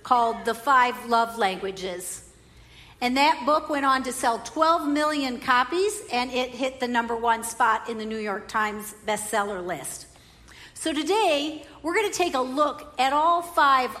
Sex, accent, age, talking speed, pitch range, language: female, American, 50-69, 170 wpm, 230-325 Hz, English